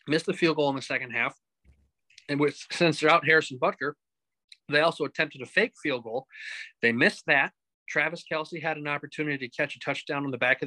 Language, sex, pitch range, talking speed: English, male, 135-170 Hz, 215 wpm